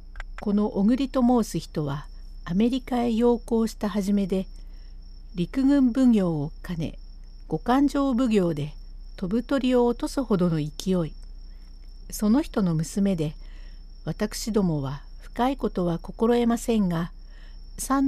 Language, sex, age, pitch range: Japanese, female, 60-79, 165-235 Hz